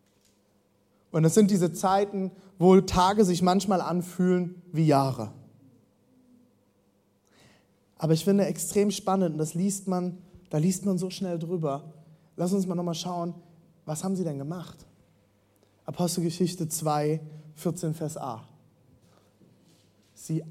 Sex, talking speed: male, 125 wpm